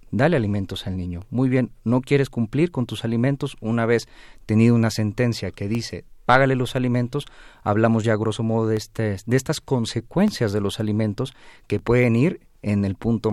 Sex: male